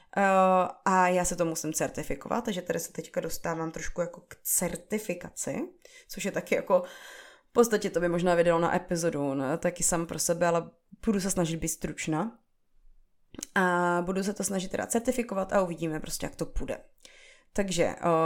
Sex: female